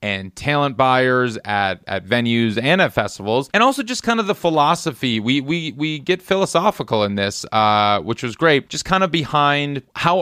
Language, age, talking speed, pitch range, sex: English, 30-49, 180 wpm, 115-165 Hz, male